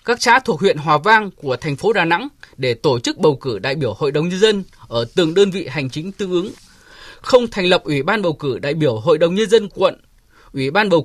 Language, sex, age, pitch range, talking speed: Vietnamese, male, 20-39, 155-210 Hz, 255 wpm